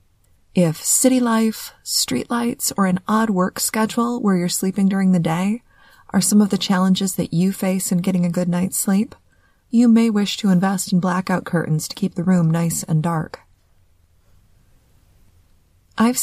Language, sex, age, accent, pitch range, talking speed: English, female, 30-49, American, 140-190 Hz, 165 wpm